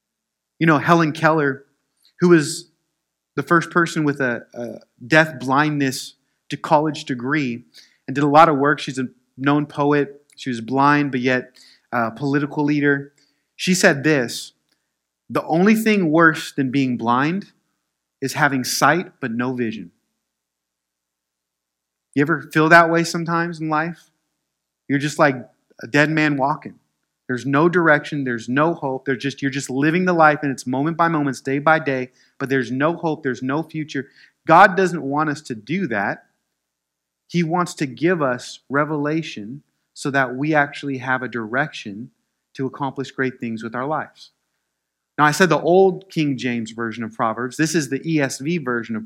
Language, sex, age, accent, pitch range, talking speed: English, male, 30-49, American, 125-155 Hz, 170 wpm